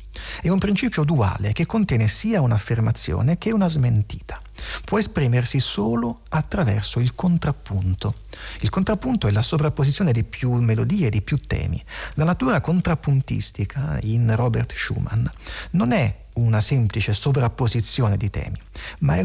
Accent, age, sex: native, 40-59, male